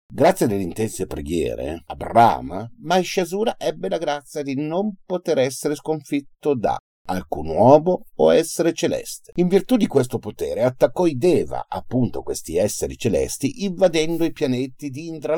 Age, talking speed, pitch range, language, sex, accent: 50-69, 150 wpm, 120-180 Hz, Italian, male, native